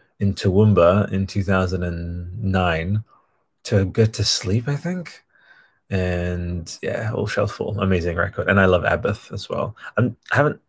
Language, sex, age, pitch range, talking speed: English, male, 20-39, 95-115 Hz, 145 wpm